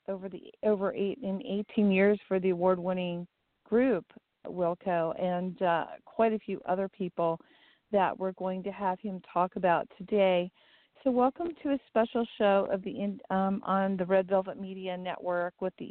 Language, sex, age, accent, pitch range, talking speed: English, female, 40-59, American, 185-210 Hz, 170 wpm